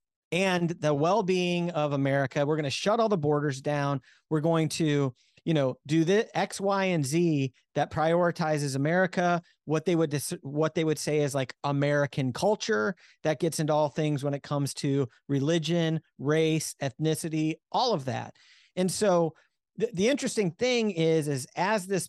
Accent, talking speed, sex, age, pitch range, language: American, 175 wpm, male, 40-59, 140-175 Hz, English